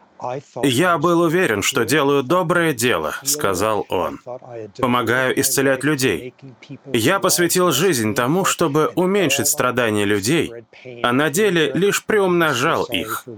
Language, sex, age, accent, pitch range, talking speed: Russian, male, 20-39, native, 115-170 Hz, 115 wpm